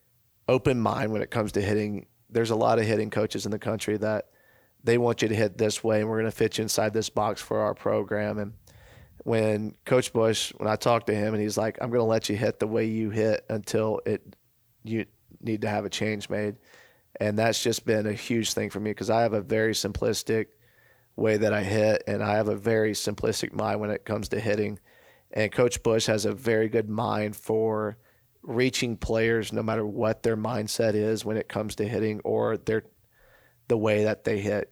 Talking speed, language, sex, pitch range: 220 wpm, English, male, 105-110 Hz